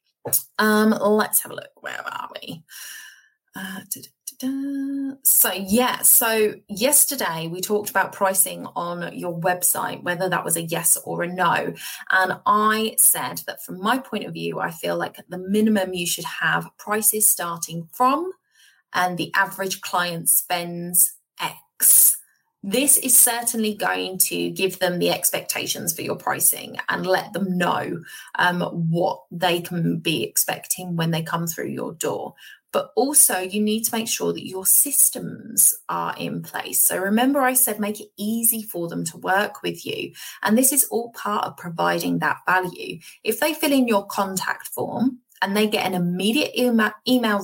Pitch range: 175-235 Hz